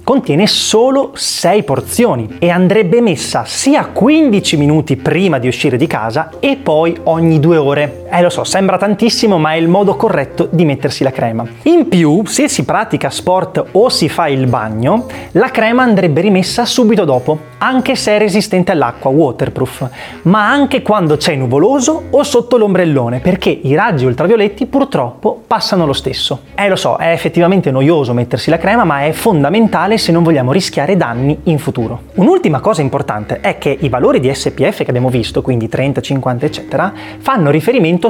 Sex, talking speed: male, 175 wpm